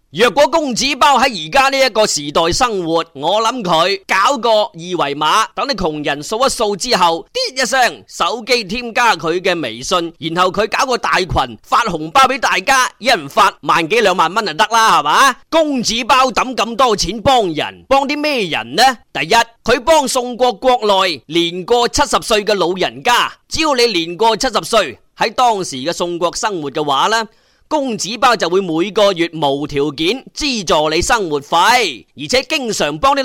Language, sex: Chinese, male